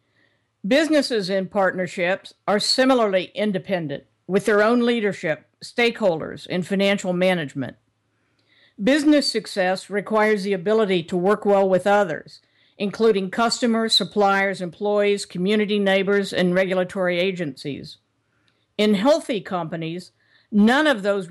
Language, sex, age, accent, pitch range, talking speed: English, female, 50-69, American, 165-210 Hz, 110 wpm